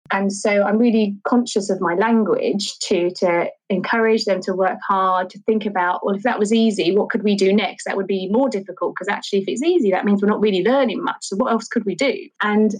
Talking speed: 245 wpm